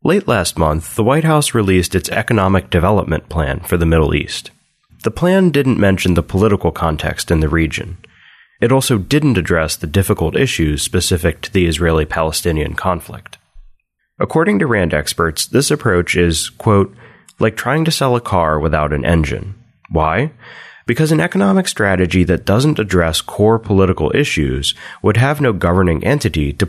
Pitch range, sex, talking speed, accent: 85-115 Hz, male, 160 wpm, American